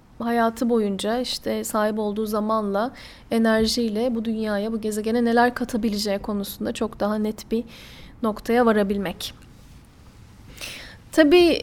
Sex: female